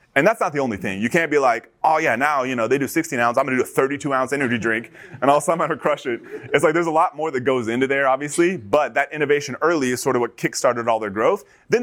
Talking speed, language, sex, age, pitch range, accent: 290 wpm, English, male, 30-49, 120-150 Hz, American